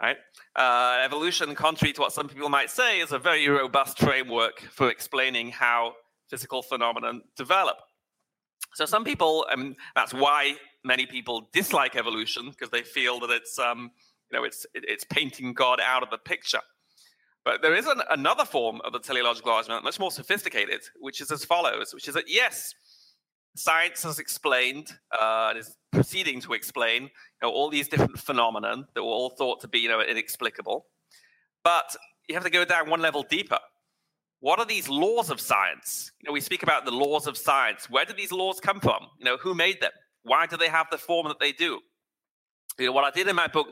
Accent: British